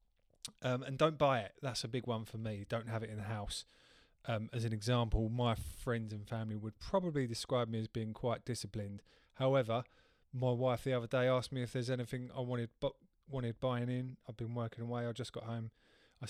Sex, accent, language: male, British, English